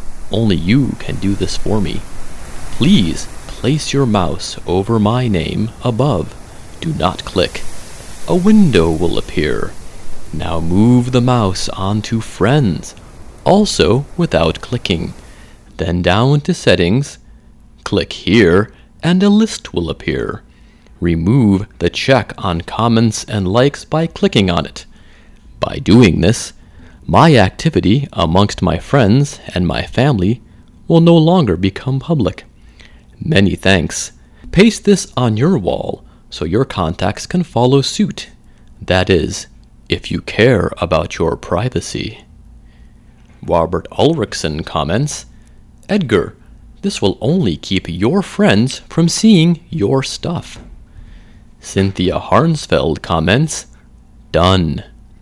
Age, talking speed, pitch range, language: 30-49, 115 wpm, 90-140 Hz, English